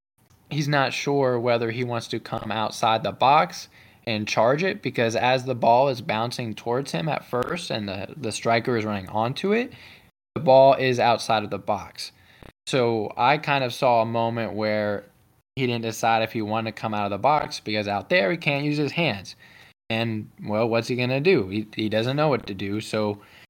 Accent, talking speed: American, 205 wpm